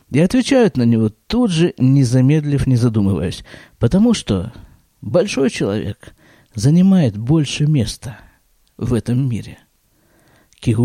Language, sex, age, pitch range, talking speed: Russian, male, 50-69, 115-175 Hz, 115 wpm